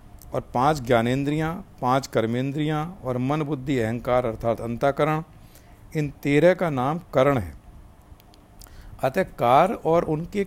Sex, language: male, Hindi